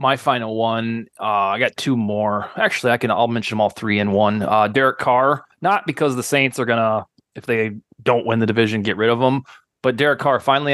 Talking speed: 235 wpm